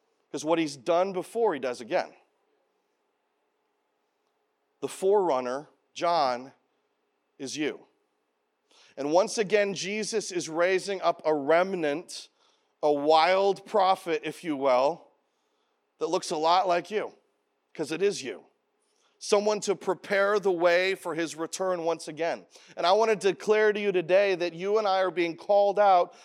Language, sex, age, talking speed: English, male, 40-59, 145 wpm